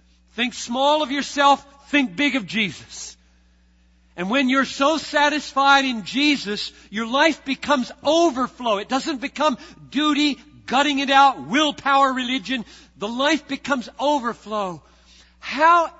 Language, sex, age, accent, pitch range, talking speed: English, male, 50-69, American, 200-285 Hz, 125 wpm